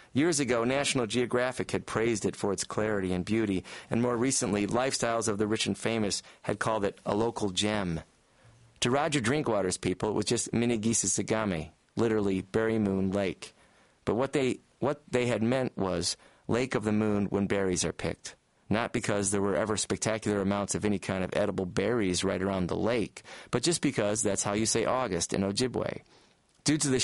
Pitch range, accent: 100-120 Hz, American